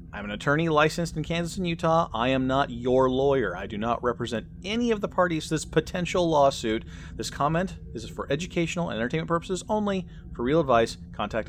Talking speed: 205 wpm